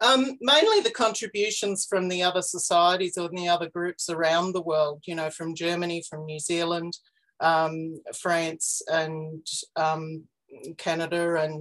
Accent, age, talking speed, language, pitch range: Australian, 40-59, 145 wpm, English, 160-180 Hz